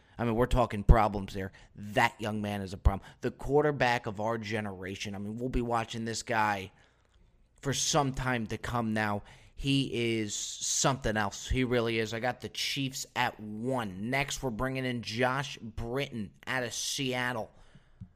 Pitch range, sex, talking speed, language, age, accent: 110-150 Hz, male, 170 wpm, English, 20-39, American